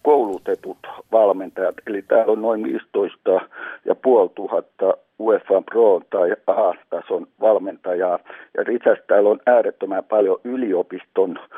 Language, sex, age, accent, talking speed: Finnish, male, 60-79, native, 125 wpm